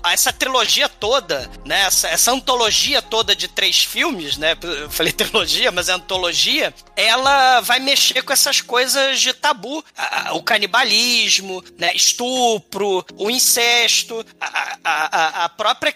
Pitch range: 200-270 Hz